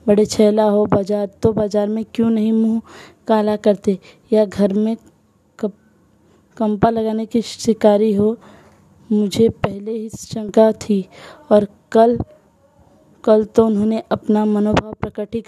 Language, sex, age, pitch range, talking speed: Hindi, female, 20-39, 200-220 Hz, 130 wpm